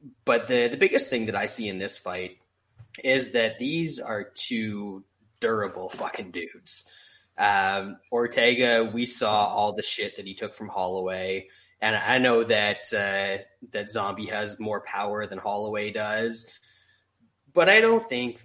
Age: 20-39